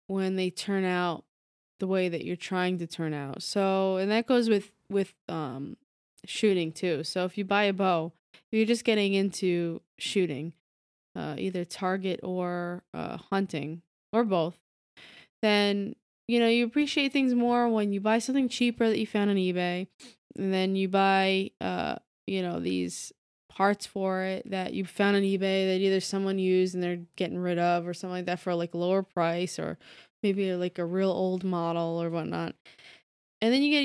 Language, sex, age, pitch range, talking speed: English, female, 20-39, 180-215 Hz, 185 wpm